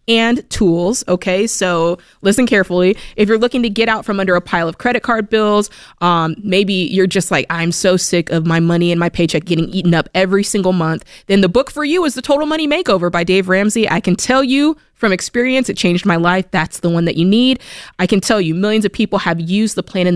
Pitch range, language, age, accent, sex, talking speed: 175-220 Hz, English, 20-39, American, female, 240 wpm